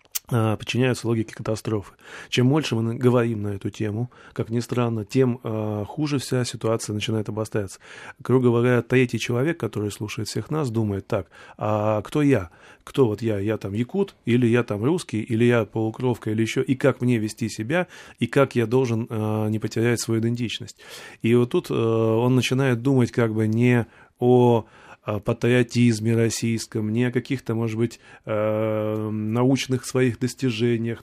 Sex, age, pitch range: male, 30-49, 110-130 Hz